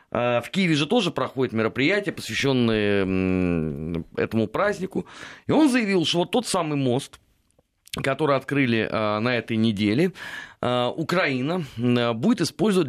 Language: Russian